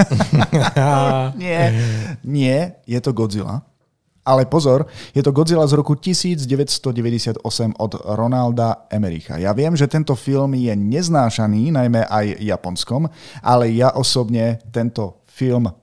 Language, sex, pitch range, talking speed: Slovak, male, 115-135 Hz, 120 wpm